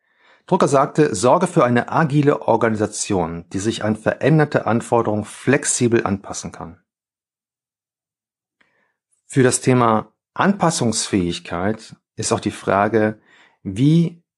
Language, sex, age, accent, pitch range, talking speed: German, male, 40-59, German, 100-140 Hz, 100 wpm